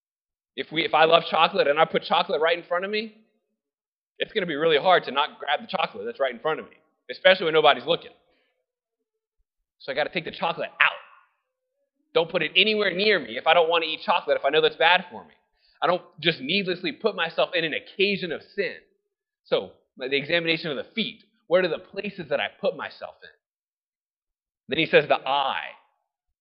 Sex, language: male, English